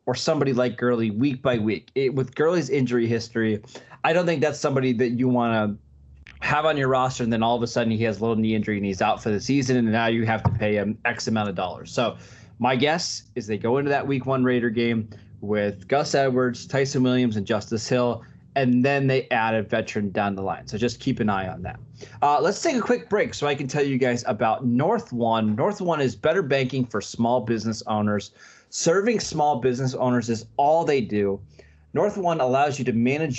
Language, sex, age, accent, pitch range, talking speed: English, male, 20-39, American, 115-135 Hz, 230 wpm